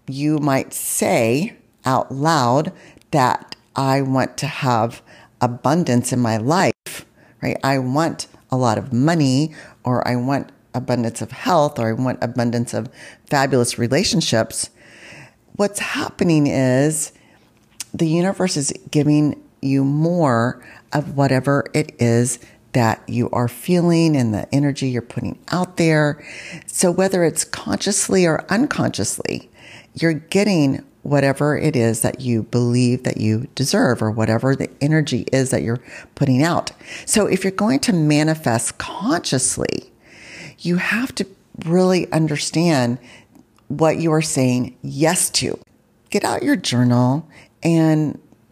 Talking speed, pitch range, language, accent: 130 wpm, 120-160 Hz, English, American